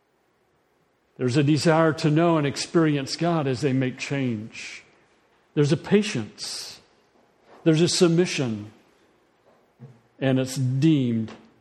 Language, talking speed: English, 110 wpm